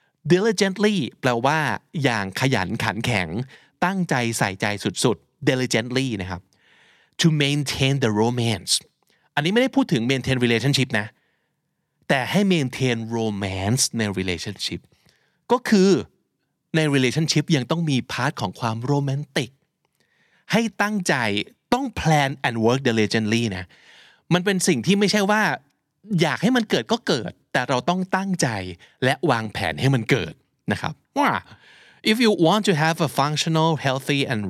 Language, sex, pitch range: Thai, male, 110-165 Hz